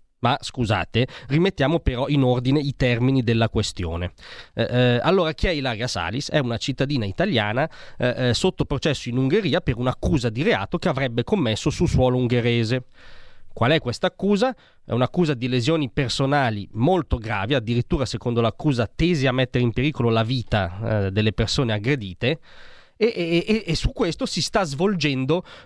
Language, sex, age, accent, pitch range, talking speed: Italian, male, 30-49, native, 120-165 Hz, 165 wpm